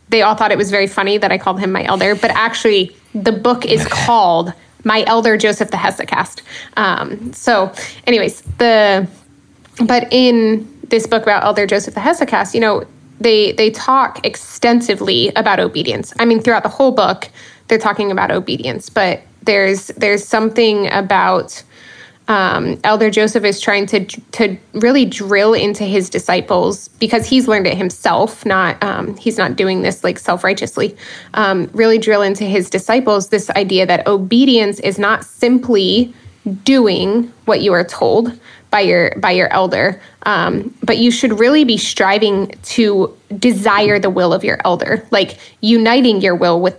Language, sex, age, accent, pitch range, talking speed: English, female, 20-39, American, 200-230 Hz, 165 wpm